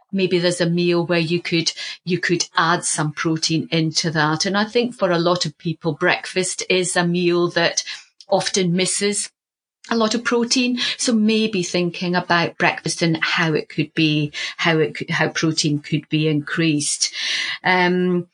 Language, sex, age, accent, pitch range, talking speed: English, female, 40-59, British, 155-180 Hz, 170 wpm